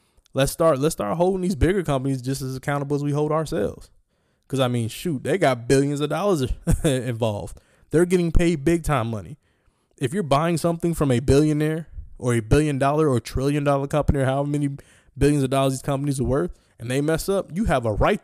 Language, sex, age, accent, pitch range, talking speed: English, male, 20-39, American, 125-155 Hz, 210 wpm